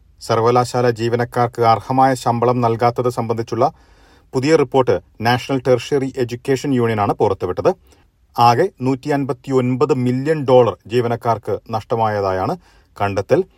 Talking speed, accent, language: 90 wpm, native, Malayalam